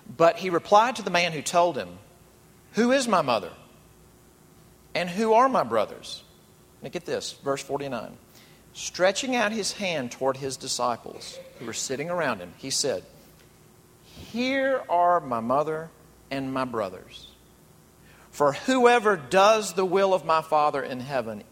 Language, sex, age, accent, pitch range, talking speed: English, male, 40-59, American, 155-215 Hz, 150 wpm